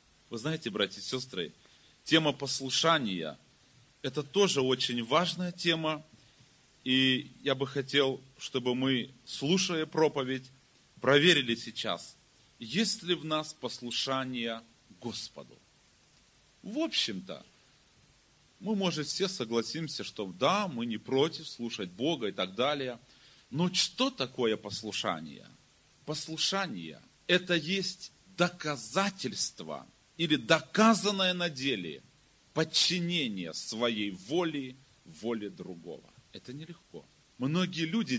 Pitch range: 130-180 Hz